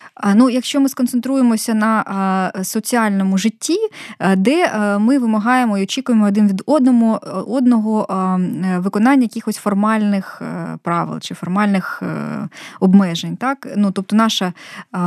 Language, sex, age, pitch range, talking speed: Ukrainian, female, 20-39, 185-230 Hz, 110 wpm